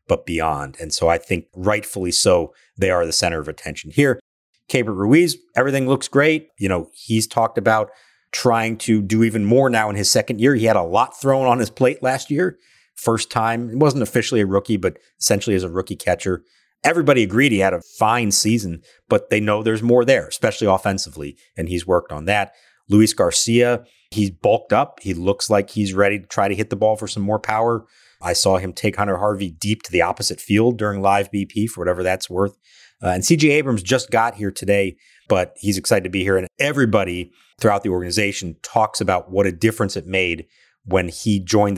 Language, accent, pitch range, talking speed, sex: English, American, 95-115 Hz, 210 wpm, male